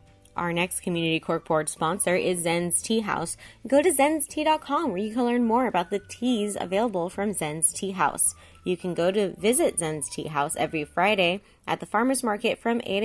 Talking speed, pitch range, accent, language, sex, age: 190 wpm, 175-240 Hz, American, English, female, 20-39